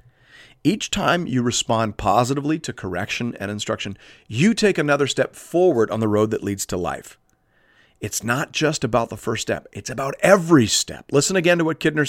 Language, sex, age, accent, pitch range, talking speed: English, male, 50-69, American, 100-135 Hz, 185 wpm